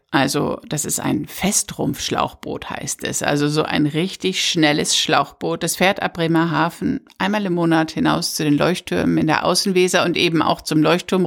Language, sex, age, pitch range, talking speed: German, female, 60-79, 155-205 Hz, 170 wpm